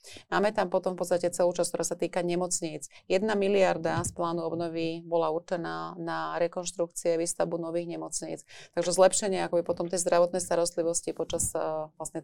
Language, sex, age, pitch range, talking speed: Slovak, female, 30-49, 165-185 Hz, 160 wpm